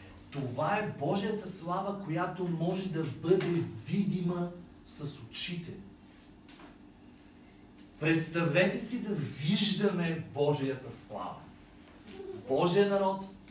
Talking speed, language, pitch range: 85 wpm, Bulgarian, 130-170 Hz